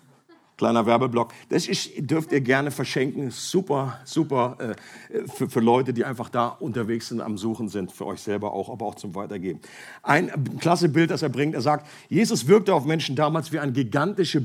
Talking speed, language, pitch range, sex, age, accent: 195 wpm, German, 125-175 Hz, male, 50-69, German